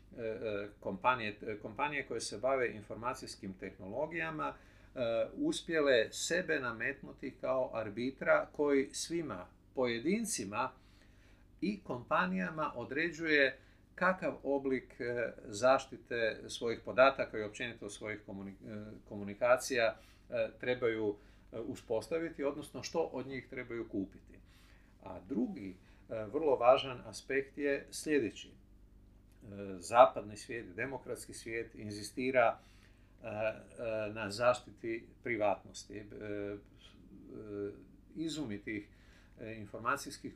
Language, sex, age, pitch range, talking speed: Croatian, male, 50-69, 100-135 Hz, 75 wpm